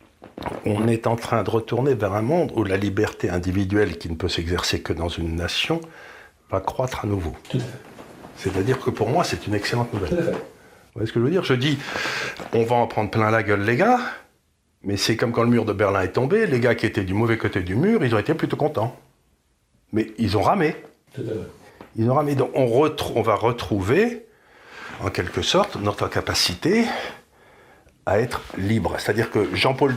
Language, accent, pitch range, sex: French, French, 100-125 Hz, male